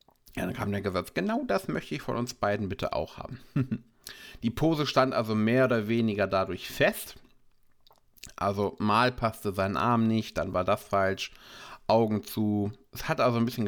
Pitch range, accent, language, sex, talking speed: 105-130 Hz, German, German, male, 180 wpm